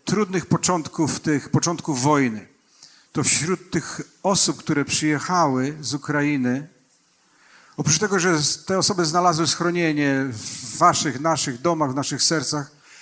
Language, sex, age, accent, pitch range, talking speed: Polish, male, 50-69, native, 140-175 Hz, 125 wpm